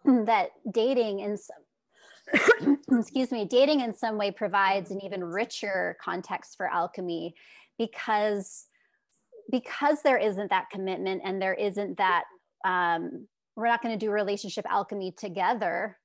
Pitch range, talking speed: 195-240 Hz, 135 wpm